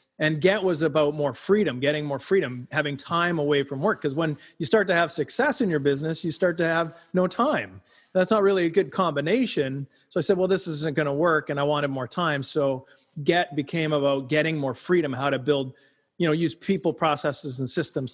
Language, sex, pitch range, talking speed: English, male, 145-180 Hz, 220 wpm